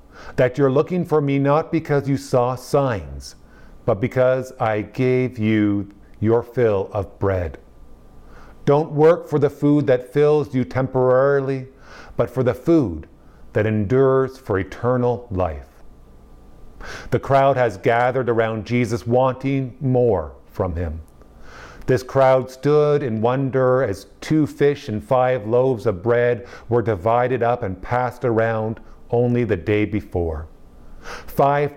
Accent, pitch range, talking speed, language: American, 105-130 Hz, 135 wpm, English